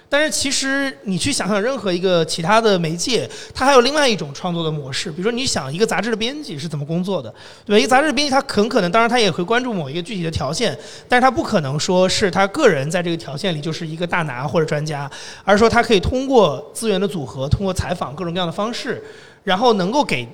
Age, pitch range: 30-49, 175-250 Hz